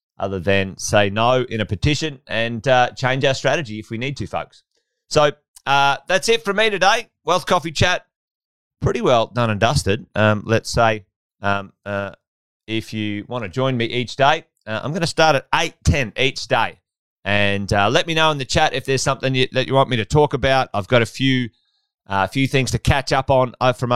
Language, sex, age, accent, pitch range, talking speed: English, male, 30-49, Australian, 110-145 Hz, 215 wpm